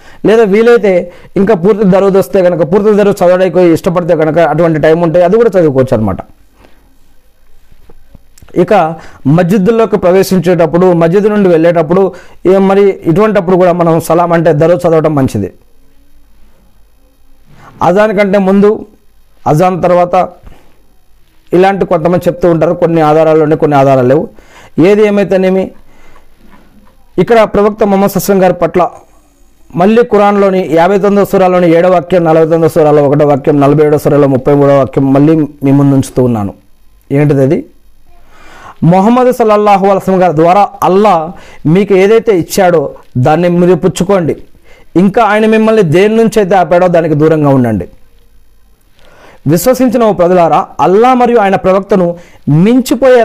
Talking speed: 115 wpm